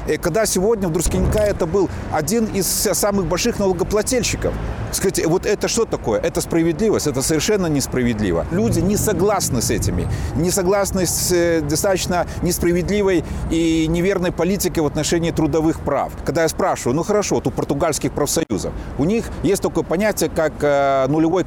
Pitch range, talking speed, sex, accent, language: 155-195 Hz, 150 wpm, male, native, Russian